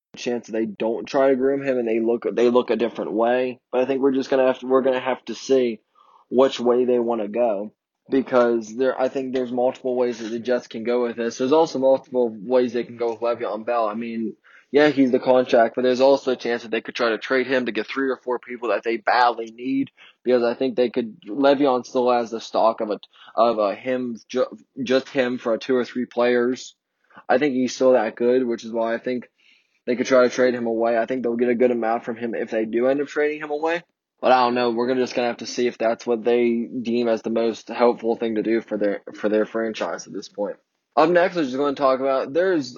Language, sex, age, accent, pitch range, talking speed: English, male, 20-39, American, 115-130 Hz, 260 wpm